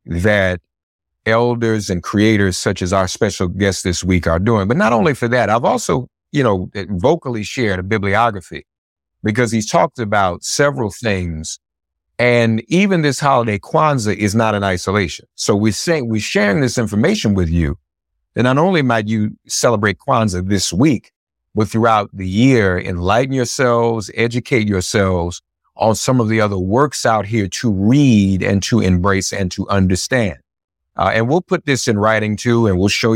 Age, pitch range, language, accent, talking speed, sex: 50-69, 95-120 Hz, English, American, 170 wpm, male